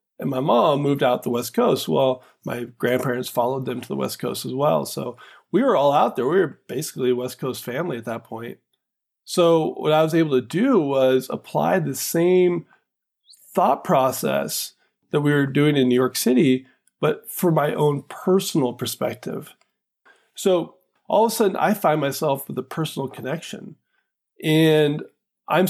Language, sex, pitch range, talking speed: English, male, 130-165 Hz, 175 wpm